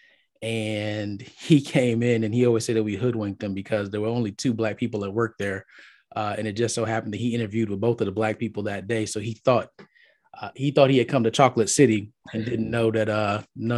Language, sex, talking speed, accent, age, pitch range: English, male, 250 wpm, American, 20-39, 110-125 Hz